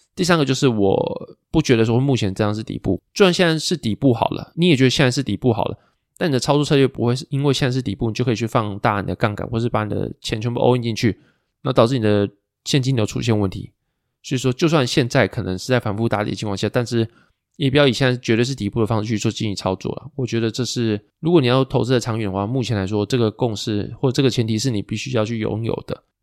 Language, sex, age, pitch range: Chinese, male, 20-39, 105-130 Hz